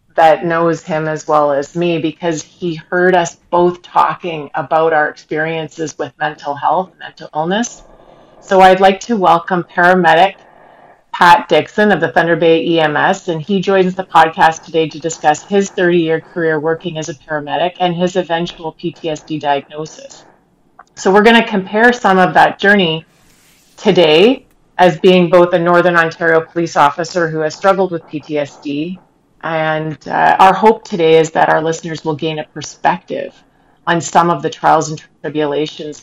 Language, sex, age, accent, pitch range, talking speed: English, female, 30-49, American, 155-180 Hz, 160 wpm